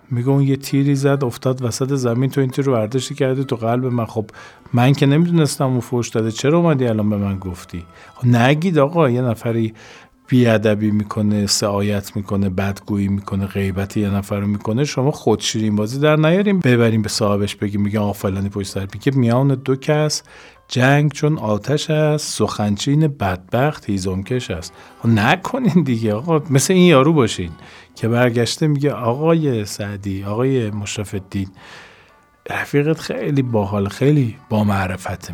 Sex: male